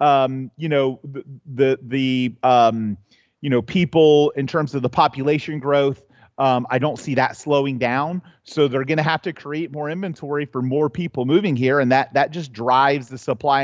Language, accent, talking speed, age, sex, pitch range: English, American, 195 wpm, 30-49, male, 130-165 Hz